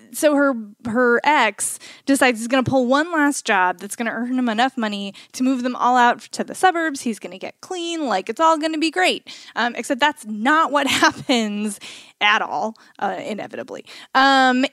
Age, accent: 20-39, American